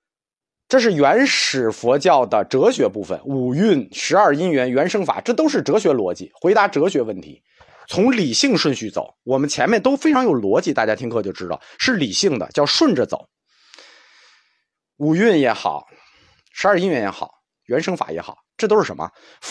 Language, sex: Chinese, male